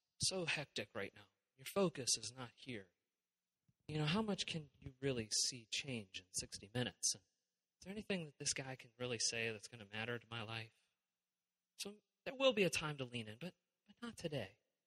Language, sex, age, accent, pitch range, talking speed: English, male, 30-49, American, 125-185 Hz, 205 wpm